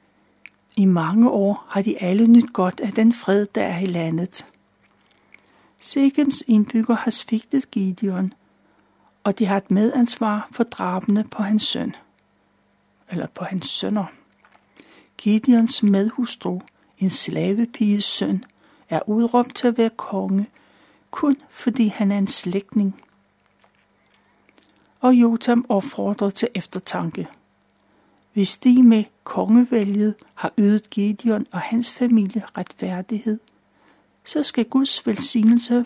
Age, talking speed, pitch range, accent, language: 60-79, 120 wpm, 195-240 Hz, native, Danish